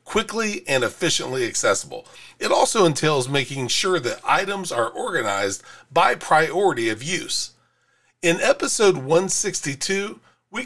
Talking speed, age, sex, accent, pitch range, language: 120 wpm, 40-59, male, American, 135-195 Hz, English